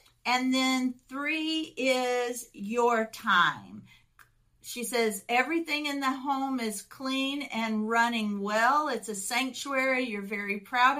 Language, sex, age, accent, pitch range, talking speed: English, female, 50-69, American, 210-255 Hz, 125 wpm